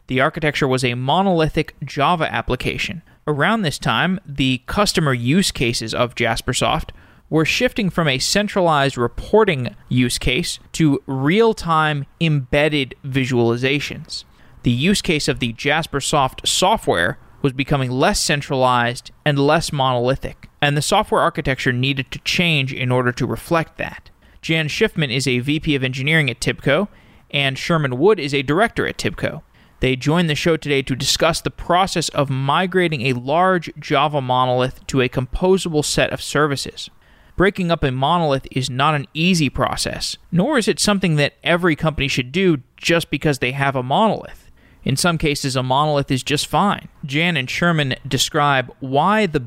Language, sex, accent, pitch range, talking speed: English, male, American, 130-160 Hz, 160 wpm